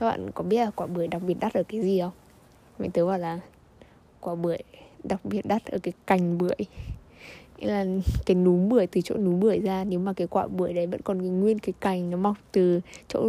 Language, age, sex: Vietnamese, 10-29, female